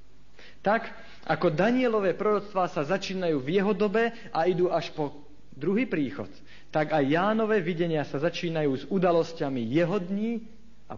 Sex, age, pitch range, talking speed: male, 50-69, 125-175 Hz, 140 wpm